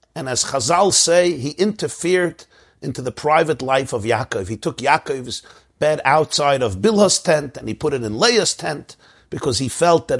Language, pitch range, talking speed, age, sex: English, 135-185 Hz, 180 wpm, 50-69, male